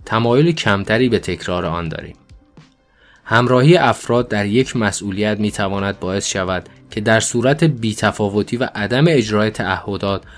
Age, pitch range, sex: 20-39, 95-120 Hz, male